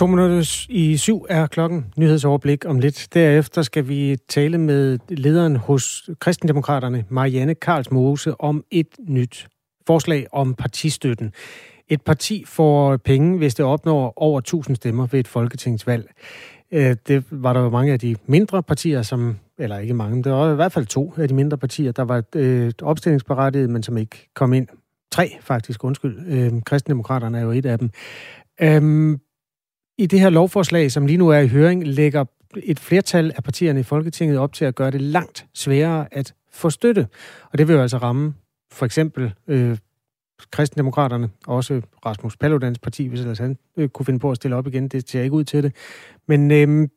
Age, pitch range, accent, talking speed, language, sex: 30-49, 130-155 Hz, native, 175 wpm, Danish, male